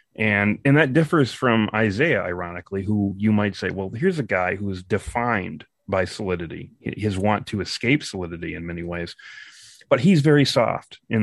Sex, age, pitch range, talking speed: male, 30-49, 95-130 Hz, 175 wpm